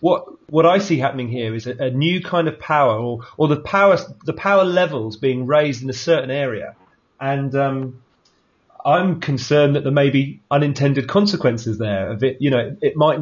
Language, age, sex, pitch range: English, 30-49, male, 115-140 Hz